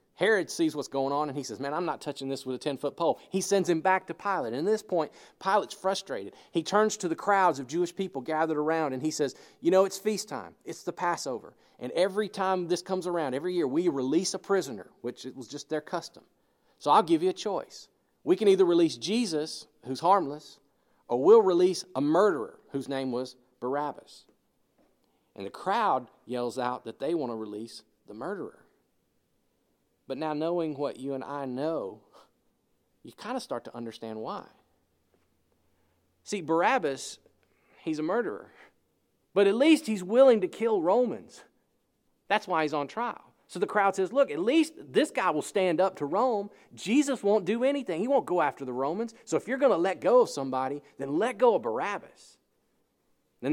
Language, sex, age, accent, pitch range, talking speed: English, male, 40-59, American, 135-205 Hz, 195 wpm